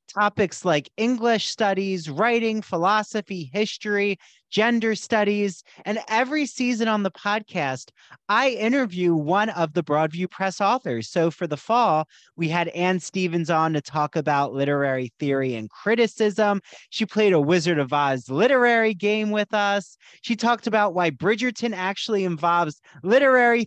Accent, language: American, English